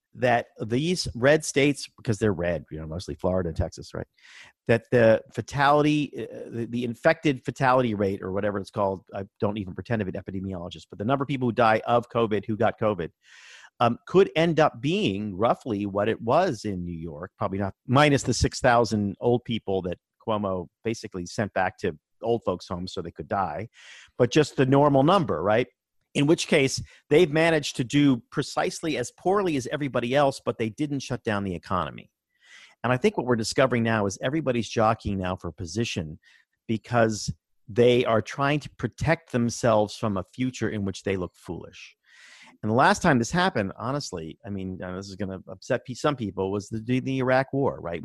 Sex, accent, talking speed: male, American, 190 wpm